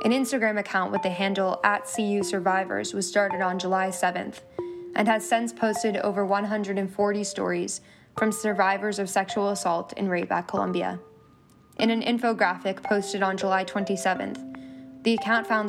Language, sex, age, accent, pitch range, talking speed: English, female, 10-29, American, 190-215 Hz, 145 wpm